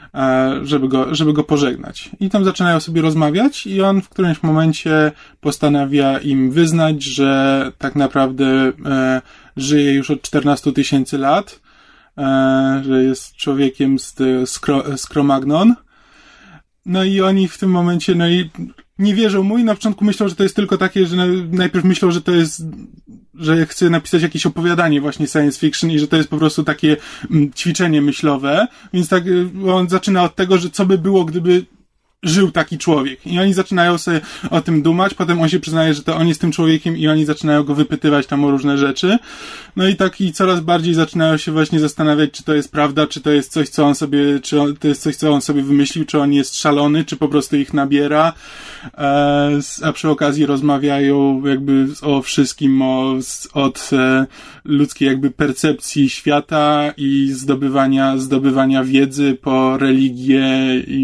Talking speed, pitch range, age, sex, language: 175 wpm, 140-175 Hz, 20-39, male, Polish